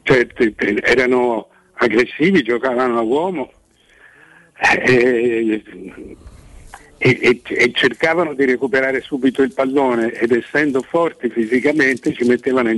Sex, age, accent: male, 60-79, native